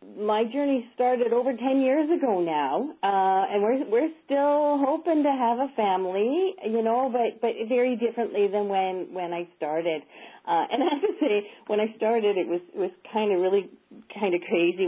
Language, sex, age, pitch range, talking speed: English, female, 40-59, 195-275 Hz, 195 wpm